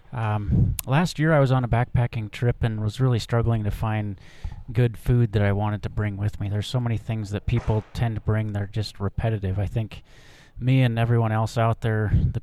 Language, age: English, 30-49